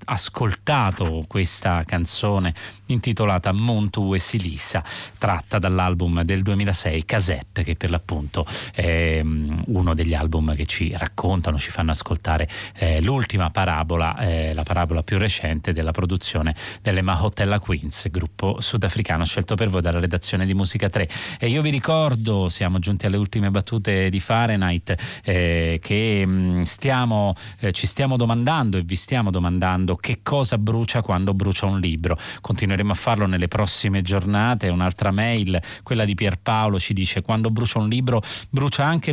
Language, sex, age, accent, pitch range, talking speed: Italian, male, 30-49, native, 90-115 Hz, 140 wpm